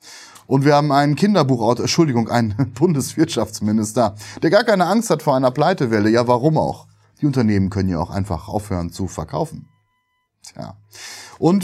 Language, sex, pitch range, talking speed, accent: German, male, 105-135 Hz, 155 wpm, German